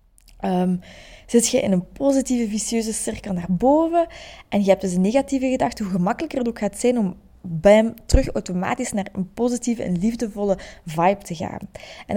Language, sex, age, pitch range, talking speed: Dutch, female, 20-39, 185-240 Hz, 175 wpm